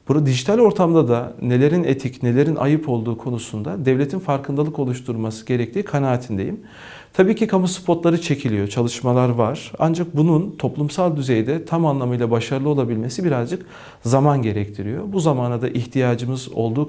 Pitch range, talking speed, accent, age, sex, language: 120-165 Hz, 135 wpm, native, 40-59, male, Turkish